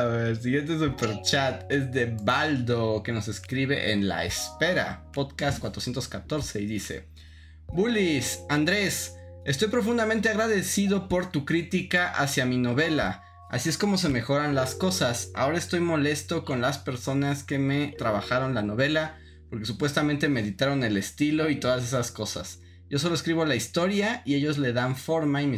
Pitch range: 120-165 Hz